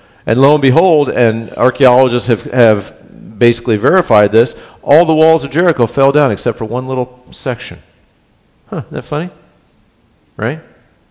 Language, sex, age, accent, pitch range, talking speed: English, male, 50-69, American, 115-150 Hz, 150 wpm